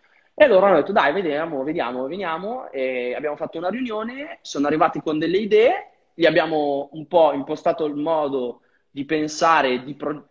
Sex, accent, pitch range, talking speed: male, native, 140-190 Hz, 165 wpm